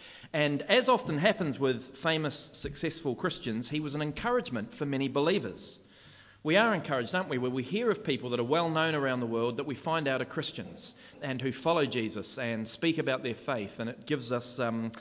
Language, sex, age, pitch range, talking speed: English, male, 30-49, 115-145 Hz, 210 wpm